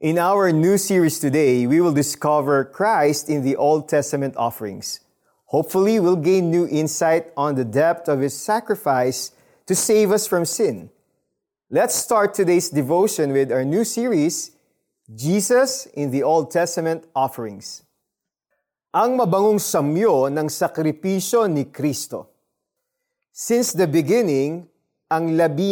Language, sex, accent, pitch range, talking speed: Filipino, male, native, 155-210 Hz, 130 wpm